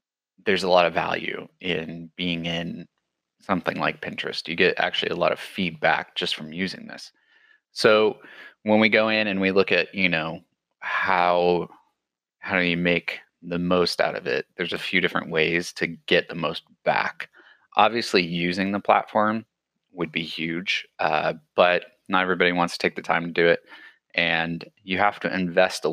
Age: 30-49